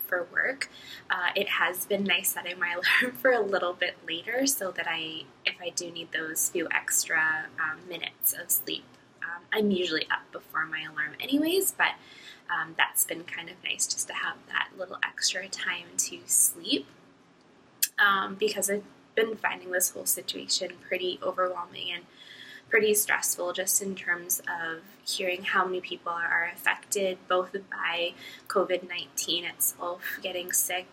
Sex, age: female, 20-39